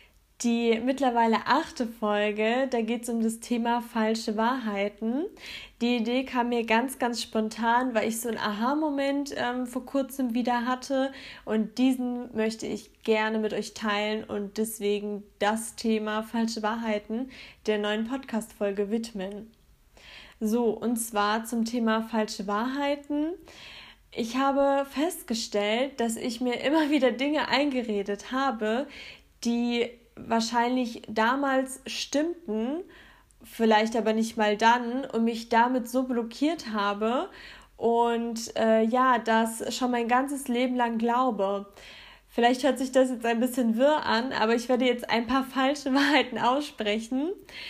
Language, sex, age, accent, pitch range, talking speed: German, female, 10-29, German, 220-260 Hz, 135 wpm